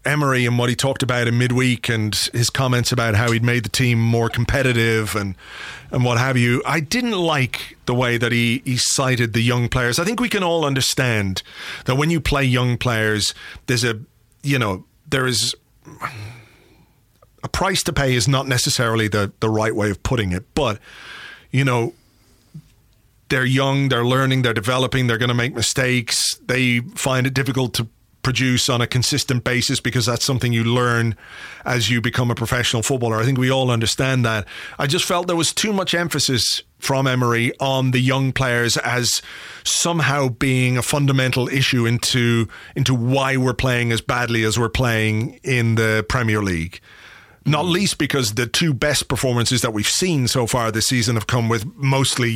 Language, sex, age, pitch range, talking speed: English, male, 30-49, 115-135 Hz, 185 wpm